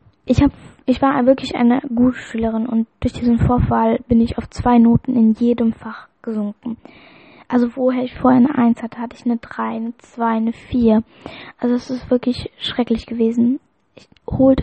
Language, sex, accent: English, female, German